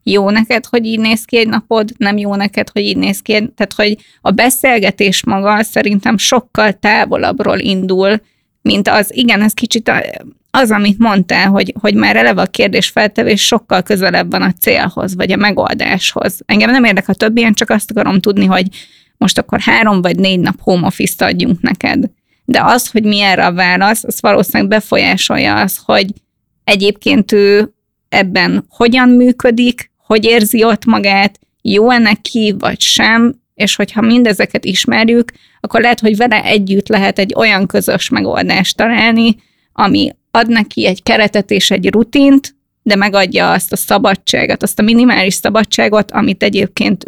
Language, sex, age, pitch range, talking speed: Hungarian, female, 20-39, 200-230 Hz, 165 wpm